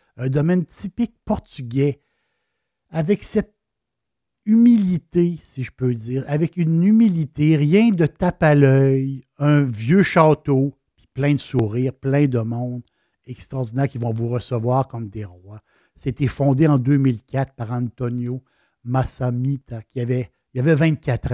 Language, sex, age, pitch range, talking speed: French, male, 60-79, 120-145 Hz, 140 wpm